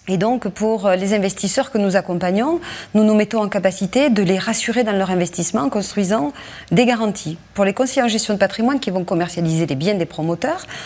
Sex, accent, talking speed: female, French, 205 wpm